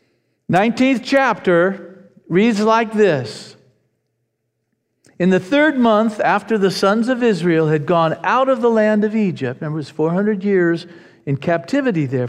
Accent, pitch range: American, 165-225 Hz